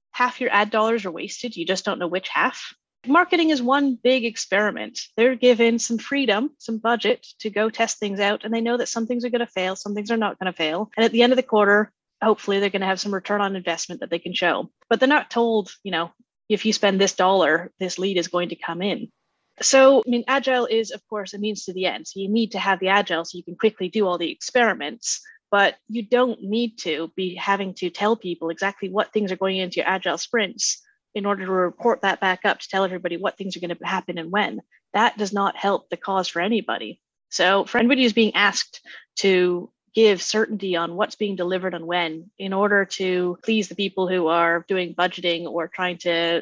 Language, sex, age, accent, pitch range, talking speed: English, female, 30-49, American, 180-225 Hz, 235 wpm